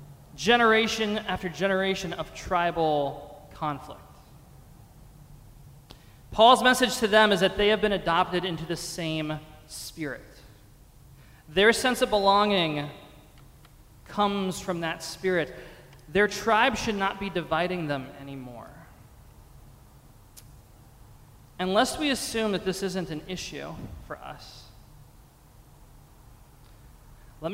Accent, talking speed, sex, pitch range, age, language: American, 100 wpm, male, 135-195 Hz, 20-39, English